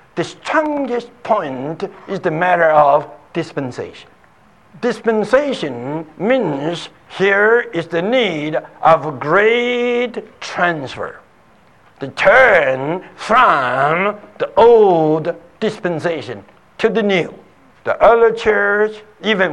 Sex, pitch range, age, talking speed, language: male, 150-225 Hz, 60-79, 90 wpm, English